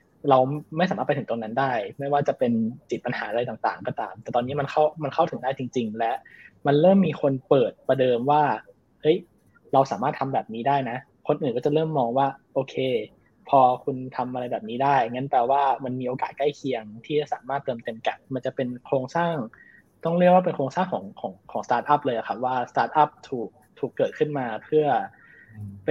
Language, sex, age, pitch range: Thai, male, 20-39, 125-150 Hz